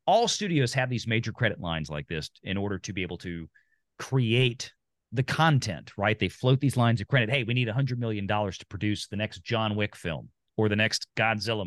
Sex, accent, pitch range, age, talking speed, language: male, American, 105-145 Hz, 40-59, 210 wpm, English